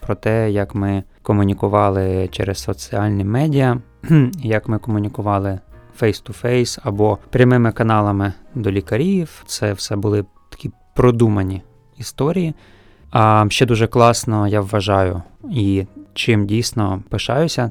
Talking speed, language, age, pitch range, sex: 110 wpm, Ukrainian, 20-39, 100-125 Hz, male